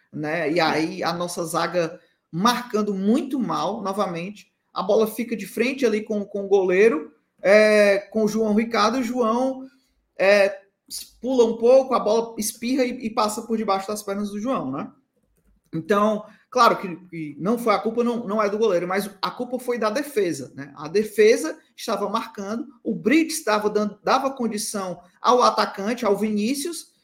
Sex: male